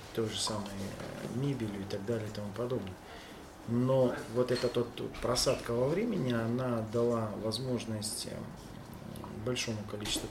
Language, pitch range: Russian, 105-120 Hz